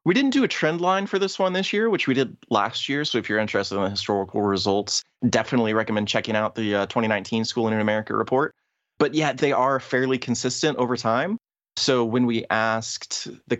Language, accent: English, American